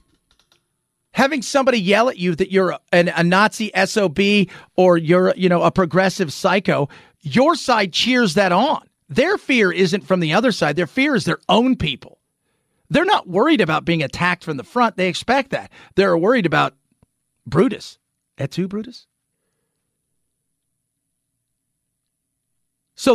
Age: 40-59